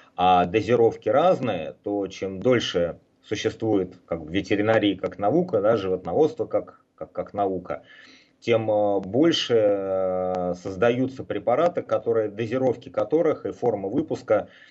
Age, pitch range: 30-49, 100-120 Hz